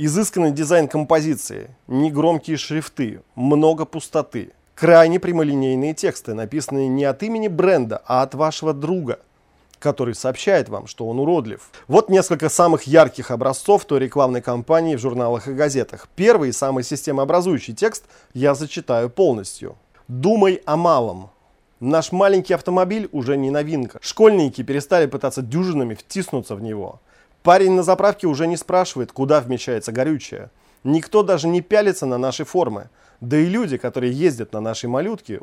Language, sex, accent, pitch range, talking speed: Russian, male, native, 130-170 Hz, 140 wpm